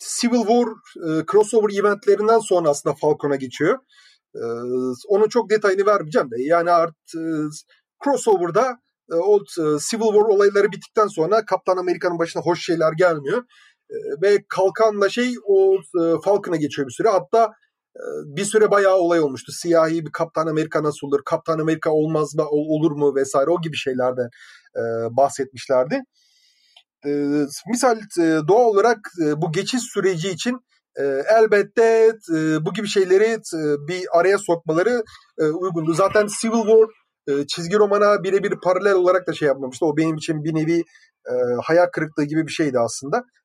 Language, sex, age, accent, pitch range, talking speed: Turkish, male, 30-49, native, 160-225 Hz, 150 wpm